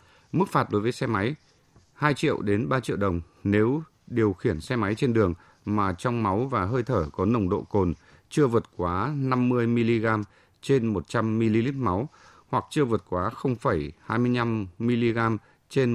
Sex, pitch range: male, 100-130 Hz